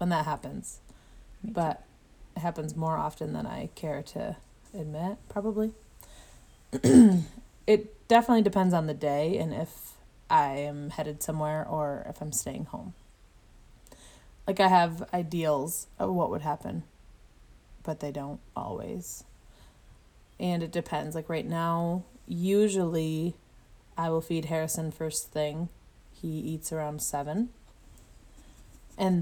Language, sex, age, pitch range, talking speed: English, female, 20-39, 150-180 Hz, 125 wpm